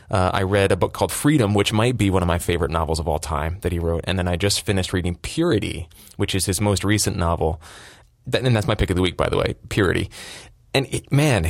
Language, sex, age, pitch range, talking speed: English, male, 20-39, 90-110 Hz, 250 wpm